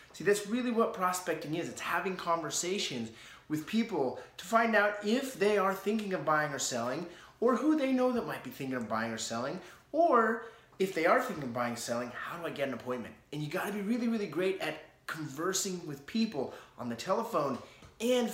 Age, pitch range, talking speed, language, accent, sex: 30-49, 140-205 Hz, 210 wpm, English, American, male